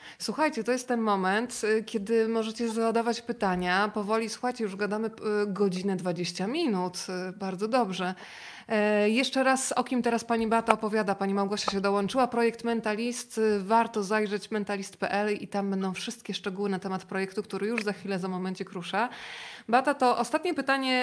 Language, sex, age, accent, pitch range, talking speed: Polish, female, 20-39, native, 200-235 Hz, 155 wpm